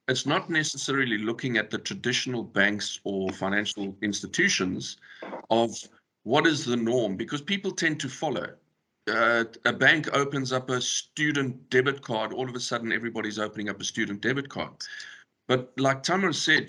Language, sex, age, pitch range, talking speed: English, male, 50-69, 115-140 Hz, 160 wpm